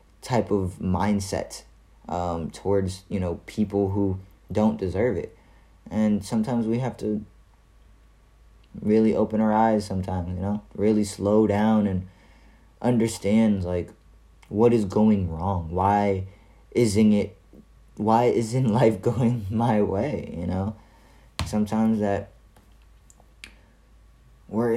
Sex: male